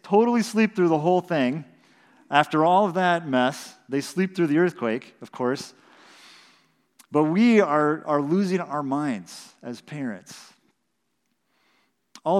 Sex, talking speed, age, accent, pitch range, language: male, 135 wpm, 40-59, American, 130-175 Hz, English